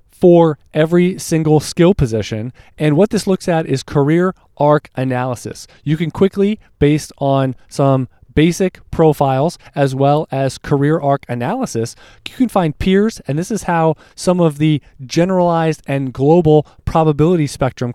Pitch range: 135-170 Hz